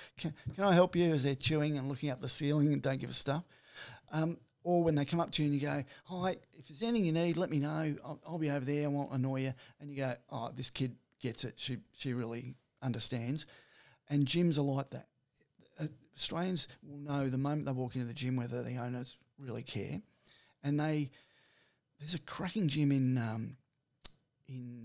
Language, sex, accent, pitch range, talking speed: English, male, Australian, 125-150 Hz, 215 wpm